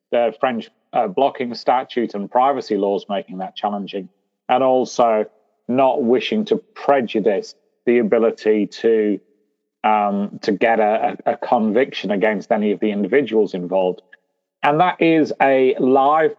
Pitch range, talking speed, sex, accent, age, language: 105-130 Hz, 135 wpm, male, British, 40-59, English